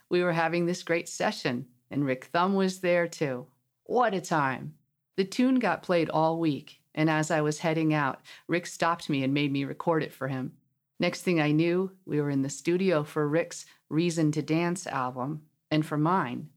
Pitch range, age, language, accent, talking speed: 140-175 Hz, 40-59, English, American, 200 wpm